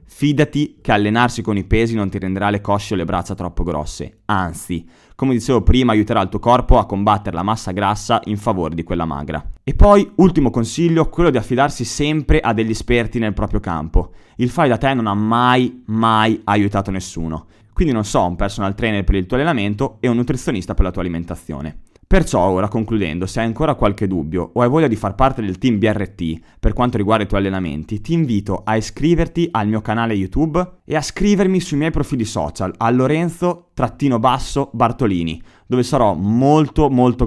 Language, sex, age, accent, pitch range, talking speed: Italian, male, 20-39, native, 95-125 Hz, 190 wpm